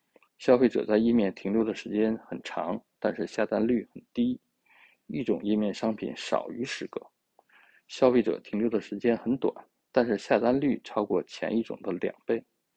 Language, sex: Chinese, male